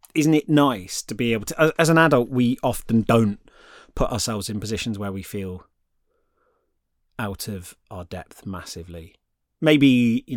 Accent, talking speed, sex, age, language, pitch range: British, 155 wpm, male, 30-49, English, 100-145 Hz